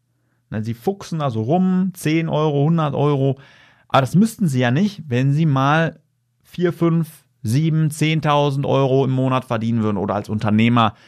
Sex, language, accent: male, German, German